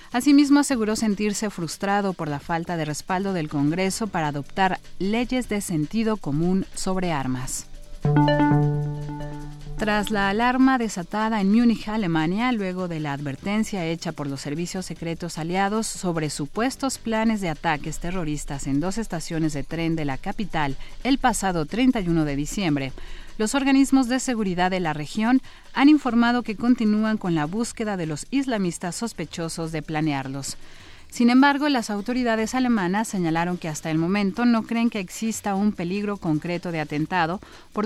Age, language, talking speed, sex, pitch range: 40-59, Spanish, 150 wpm, female, 155-225 Hz